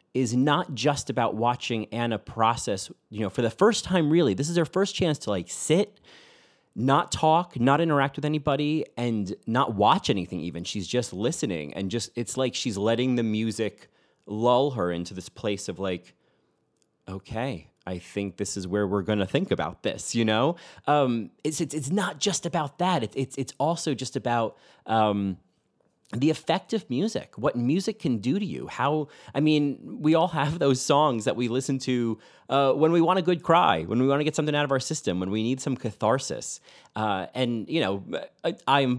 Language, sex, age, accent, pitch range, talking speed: English, male, 30-49, American, 105-150 Hz, 195 wpm